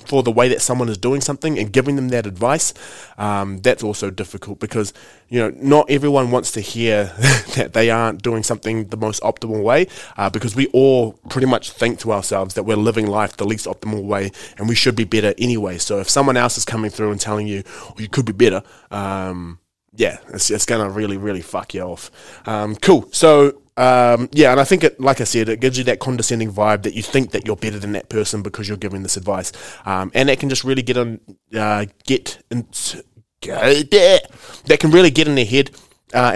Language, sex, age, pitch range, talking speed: English, male, 20-39, 105-125 Hz, 225 wpm